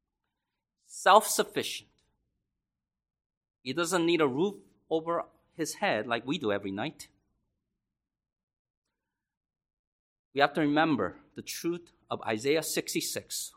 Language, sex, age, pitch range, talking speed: English, male, 40-59, 130-215 Hz, 100 wpm